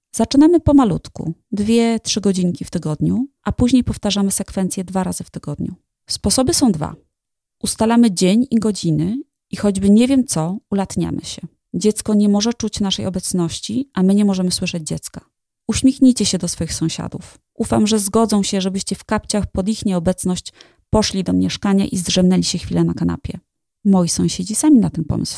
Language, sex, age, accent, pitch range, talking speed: Polish, female, 30-49, native, 180-225 Hz, 170 wpm